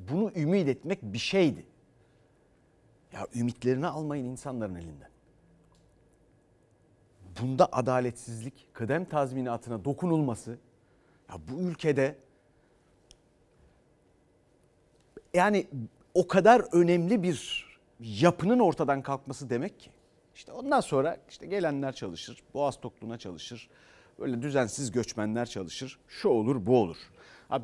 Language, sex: Turkish, male